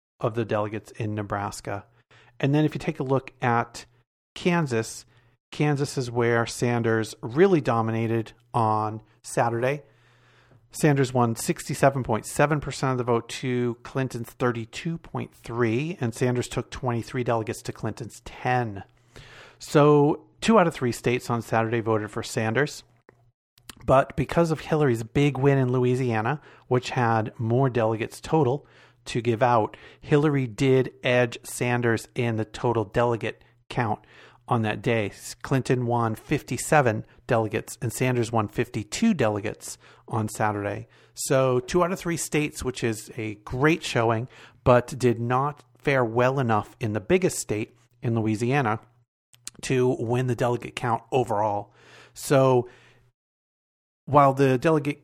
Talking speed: 135 wpm